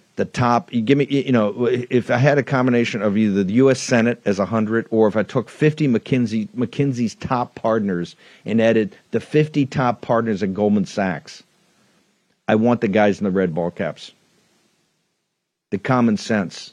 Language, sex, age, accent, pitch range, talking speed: English, male, 50-69, American, 110-150 Hz, 180 wpm